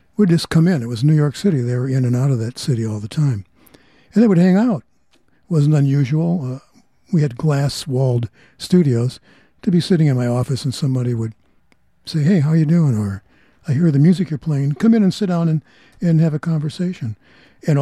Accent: American